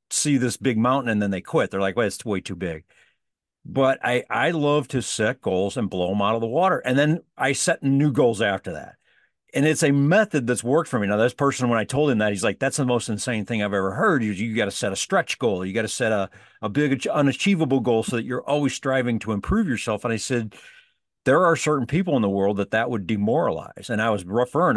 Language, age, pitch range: English, 50-69, 100-130 Hz